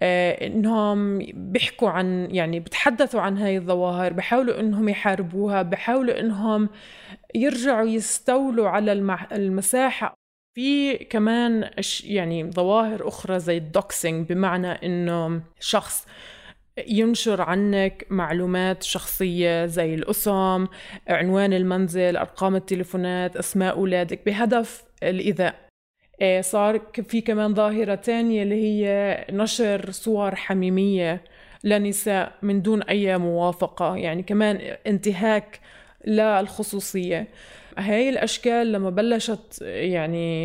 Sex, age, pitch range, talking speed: female, 20-39, 180-220 Hz, 95 wpm